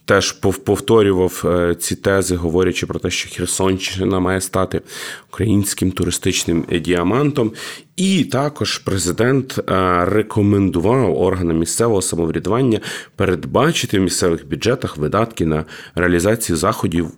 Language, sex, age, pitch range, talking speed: Ukrainian, male, 30-49, 90-105 Hz, 100 wpm